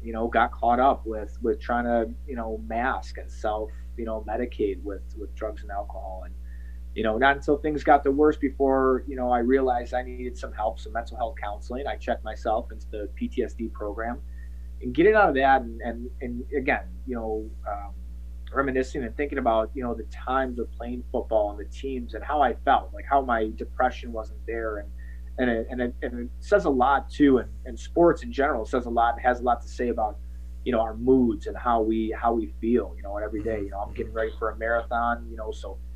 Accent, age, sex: American, 30-49, male